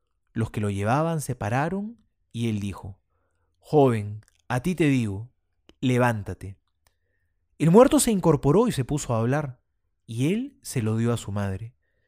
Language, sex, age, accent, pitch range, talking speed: Spanish, male, 30-49, Argentinian, 105-165 Hz, 160 wpm